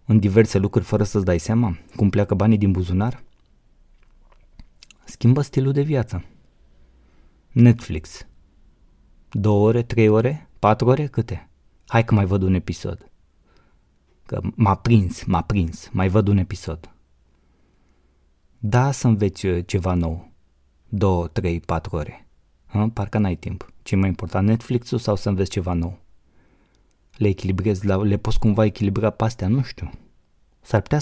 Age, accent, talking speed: 20-39, native, 135 wpm